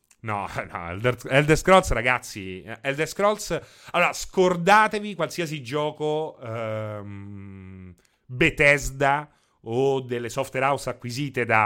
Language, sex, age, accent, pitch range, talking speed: Italian, male, 30-49, native, 110-150 Hz, 95 wpm